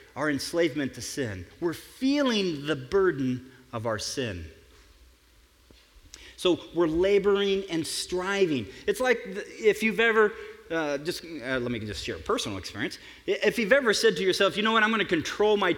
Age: 40-59